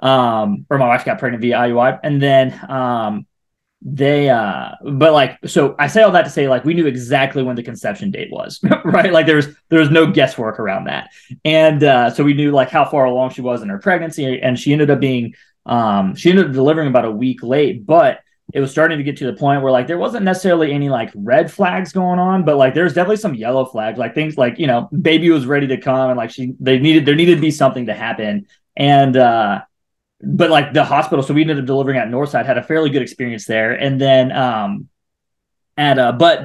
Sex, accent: male, American